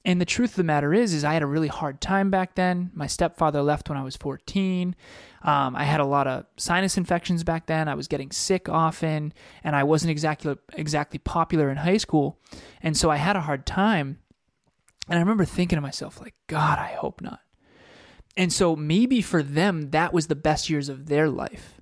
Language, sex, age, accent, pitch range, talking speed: English, male, 20-39, American, 145-175 Hz, 215 wpm